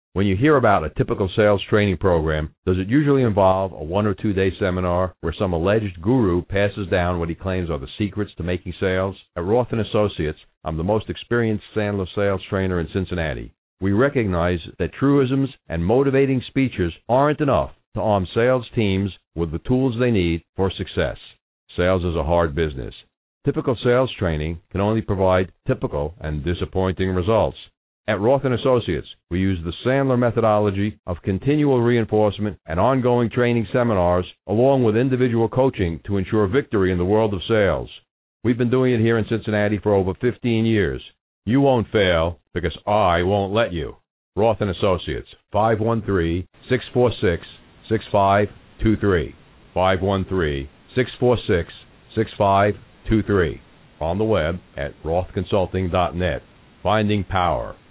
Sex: male